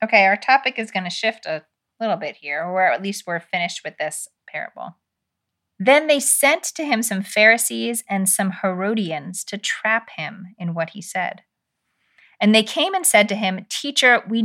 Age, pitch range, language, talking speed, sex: 30-49, 175-230 Hz, English, 185 wpm, female